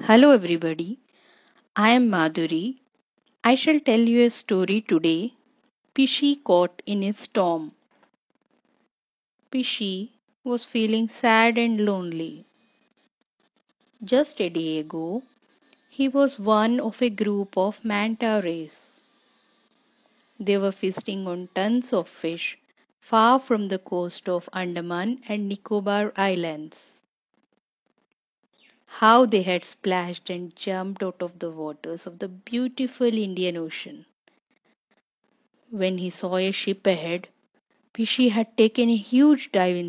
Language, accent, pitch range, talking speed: English, Indian, 180-245 Hz, 120 wpm